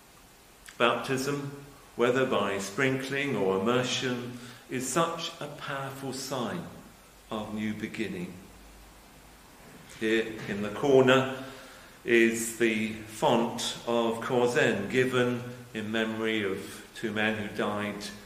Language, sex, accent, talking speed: English, male, British, 100 wpm